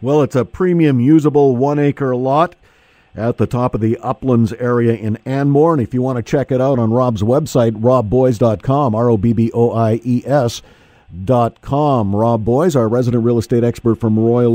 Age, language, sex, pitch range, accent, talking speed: 50-69, English, male, 120-155 Hz, American, 160 wpm